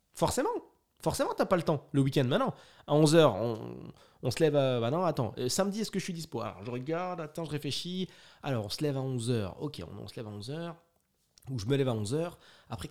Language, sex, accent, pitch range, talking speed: French, male, French, 115-165 Hz, 240 wpm